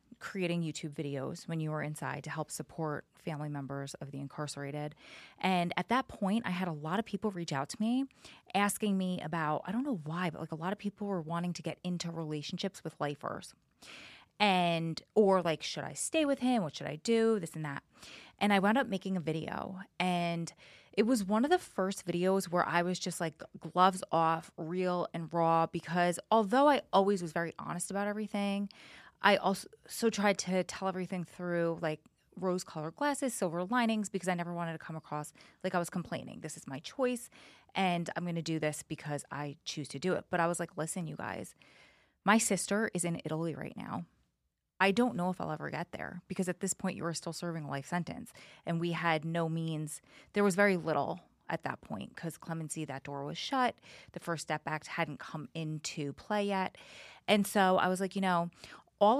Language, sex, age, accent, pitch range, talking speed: English, female, 20-39, American, 160-200 Hz, 210 wpm